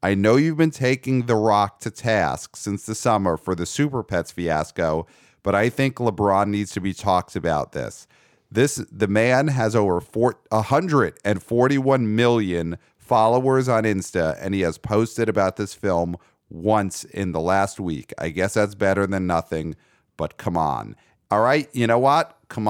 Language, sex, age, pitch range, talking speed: English, male, 40-59, 95-115 Hz, 170 wpm